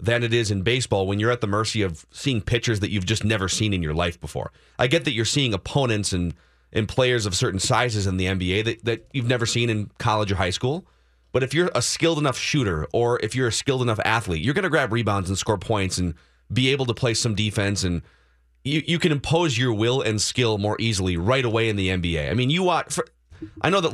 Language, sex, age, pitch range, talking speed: English, male, 30-49, 95-130 Hz, 250 wpm